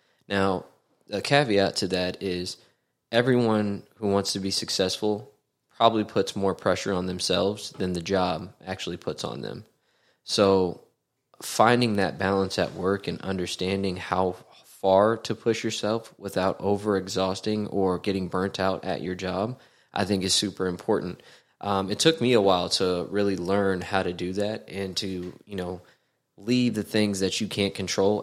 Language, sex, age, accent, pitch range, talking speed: English, male, 20-39, American, 95-105 Hz, 160 wpm